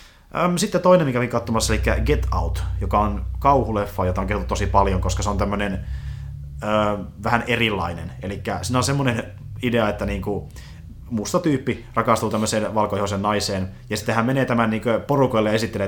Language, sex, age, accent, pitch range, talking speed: Finnish, male, 30-49, native, 105-145 Hz, 170 wpm